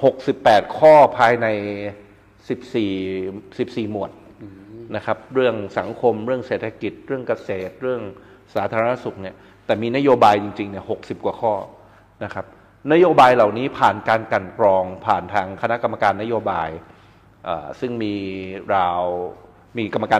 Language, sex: Thai, male